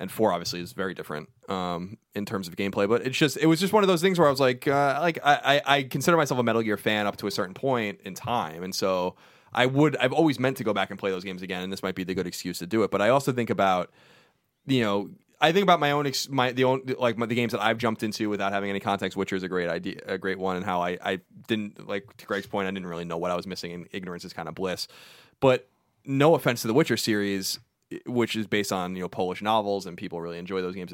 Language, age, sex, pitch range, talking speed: English, 20-39, male, 95-125 Hz, 285 wpm